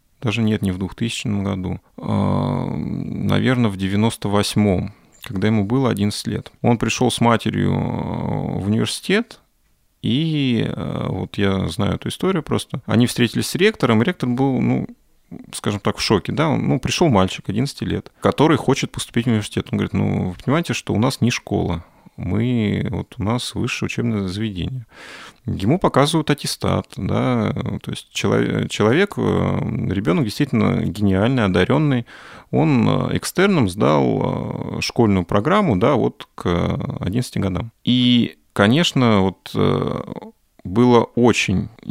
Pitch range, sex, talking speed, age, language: 100-125 Hz, male, 135 wpm, 30-49, Russian